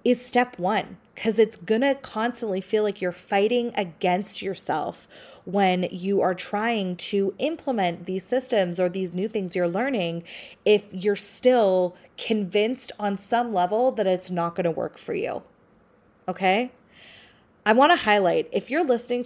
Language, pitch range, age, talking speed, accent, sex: English, 185-245 Hz, 20-39, 160 wpm, American, female